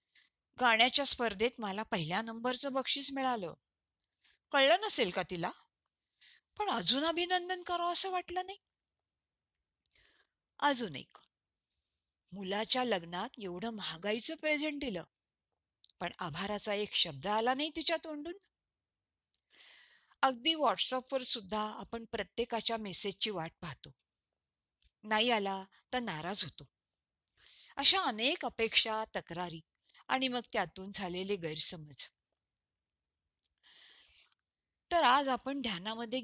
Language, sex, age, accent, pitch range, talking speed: Marathi, female, 50-69, native, 175-255 Hz, 100 wpm